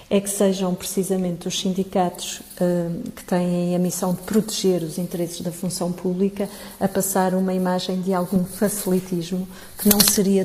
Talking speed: 155 wpm